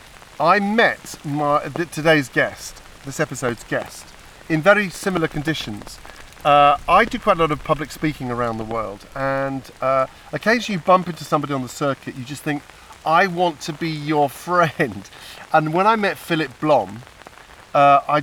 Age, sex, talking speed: 40-59, male, 170 wpm